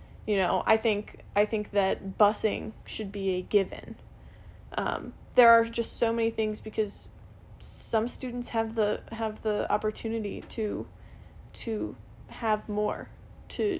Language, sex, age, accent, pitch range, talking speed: English, female, 10-29, American, 190-220 Hz, 140 wpm